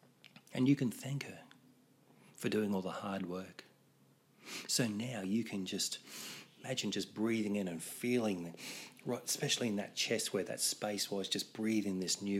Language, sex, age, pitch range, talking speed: English, male, 30-49, 90-115 Hz, 175 wpm